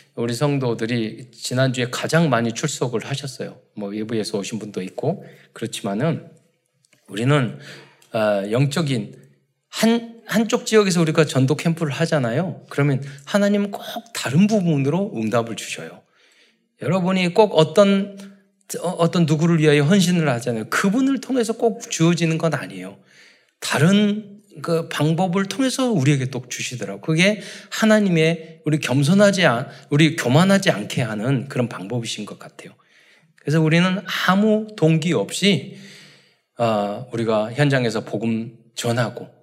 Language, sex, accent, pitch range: Korean, male, native, 125-185 Hz